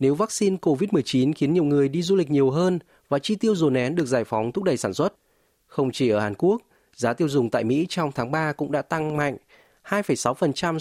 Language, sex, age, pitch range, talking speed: Vietnamese, male, 20-39, 120-160 Hz, 230 wpm